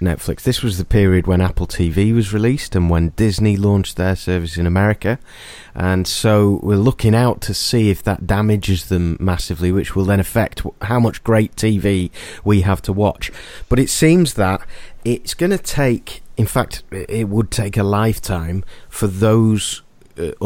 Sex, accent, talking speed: male, British, 175 wpm